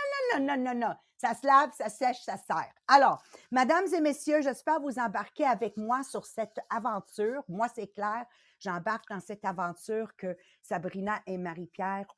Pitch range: 185-270 Hz